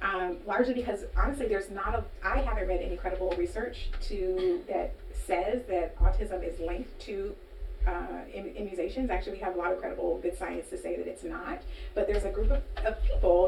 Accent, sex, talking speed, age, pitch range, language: American, female, 190 wpm, 30-49, 175-235 Hz, English